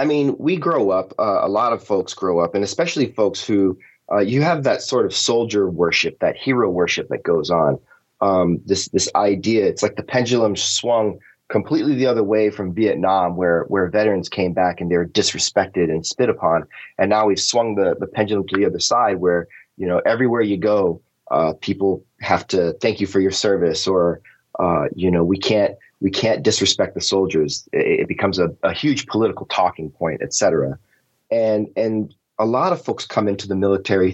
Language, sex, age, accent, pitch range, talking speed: English, male, 30-49, American, 90-110 Hz, 200 wpm